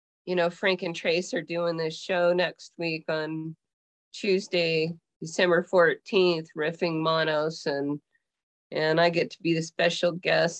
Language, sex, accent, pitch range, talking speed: English, female, American, 160-190 Hz, 145 wpm